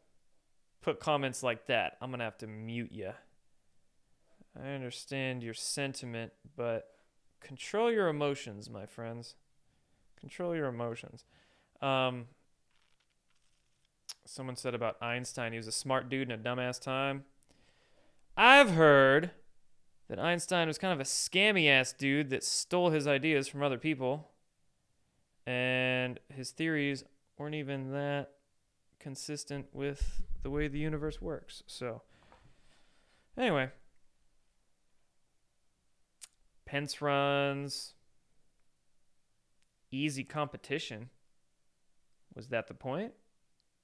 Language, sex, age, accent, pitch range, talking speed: English, male, 20-39, American, 120-150 Hz, 110 wpm